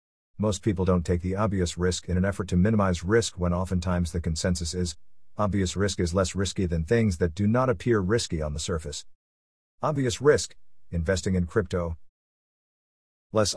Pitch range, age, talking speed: 85-115 Hz, 50-69, 170 wpm